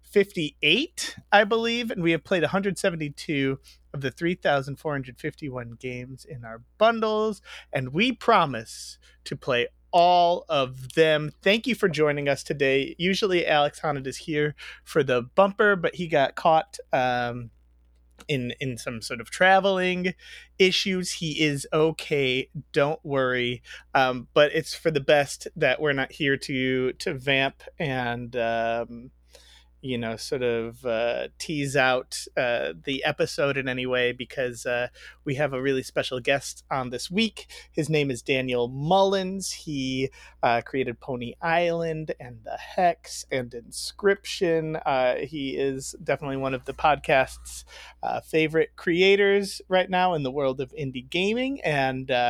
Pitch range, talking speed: 125-170 Hz, 155 wpm